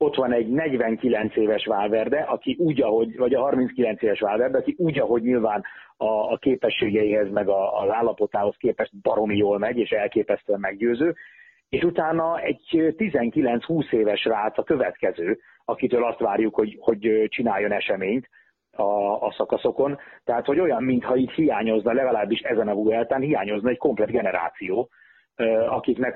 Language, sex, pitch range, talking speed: Hungarian, male, 110-140 Hz, 140 wpm